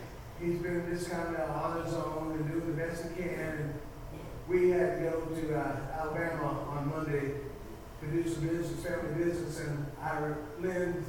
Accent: American